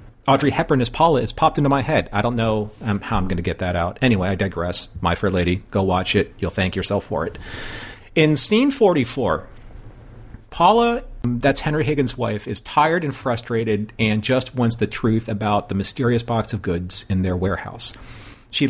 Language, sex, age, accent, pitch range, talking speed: English, male, 40-59, American, 100-125 Hz, 195 wpm